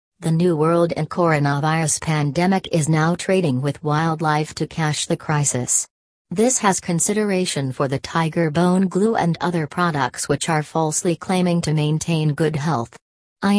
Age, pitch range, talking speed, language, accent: 40-59, 150-175 Hz, 155 wpm, English, American